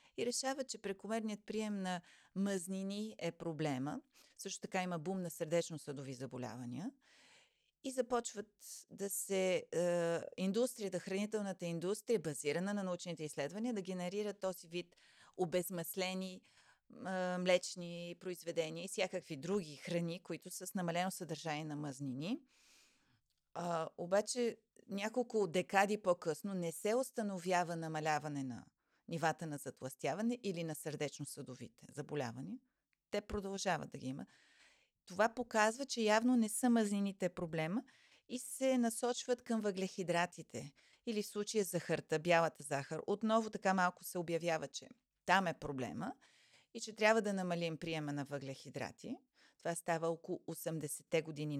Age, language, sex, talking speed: 30-49, Bulgarian, female, 130 wpm